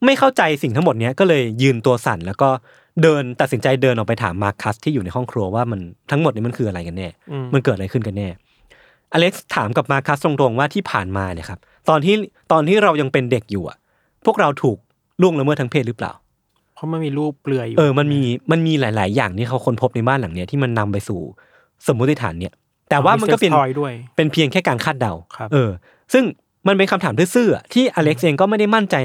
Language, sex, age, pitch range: Thai, male, 20-39, 115-155 Hz